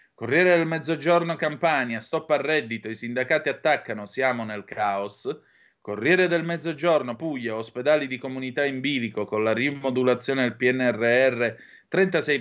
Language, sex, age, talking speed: Italian, male, 30-49, 135 wpm